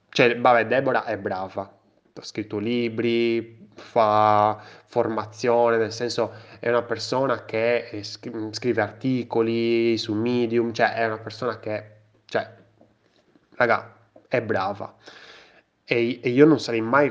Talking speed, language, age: 125 wpm, Italian, 20-39